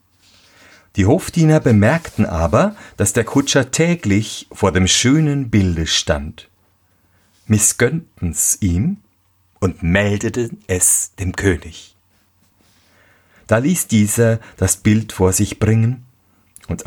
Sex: male